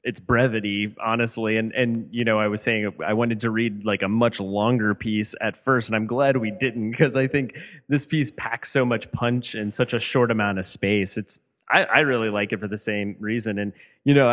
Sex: male